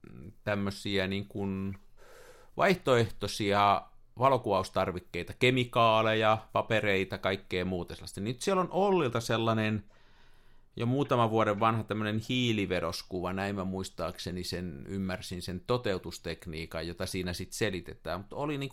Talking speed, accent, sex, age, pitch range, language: 110 wpm, native, male, 50-69, 95-135 Hz, Finnish